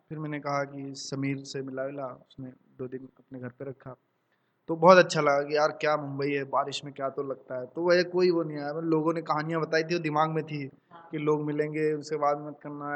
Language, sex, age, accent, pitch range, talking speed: English, male, 20-39, Indian, 130-160 Hz, 225 wpm